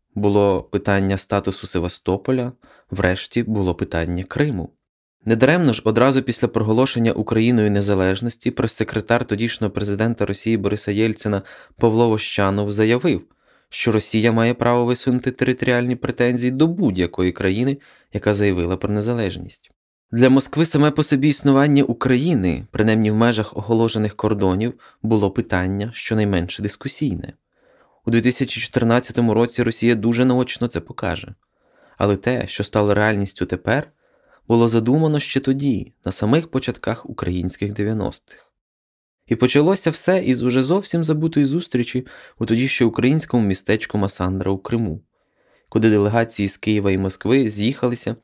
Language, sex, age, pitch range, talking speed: Ukrainian, male, 20-39, 100-125 Hz, 125 wpm